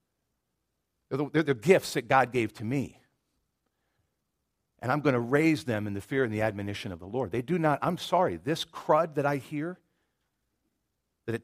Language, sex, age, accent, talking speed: English, male, 50-69, American, 185 wpm